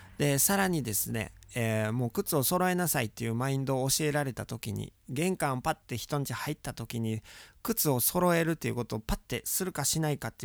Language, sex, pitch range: Japanese, male, 115-175 Hz